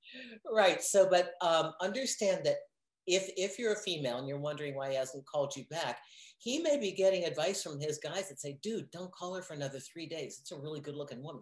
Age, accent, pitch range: 50-69, American, 140-195 Hz